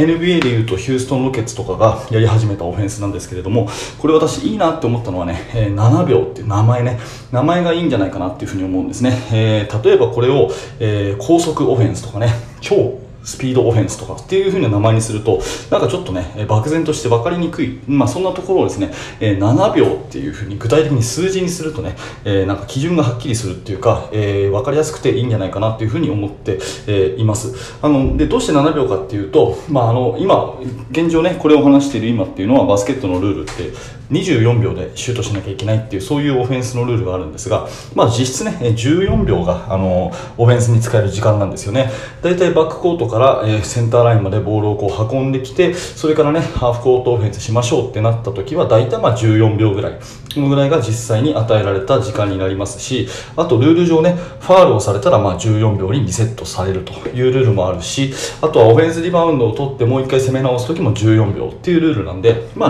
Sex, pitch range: male, 105-135 Hz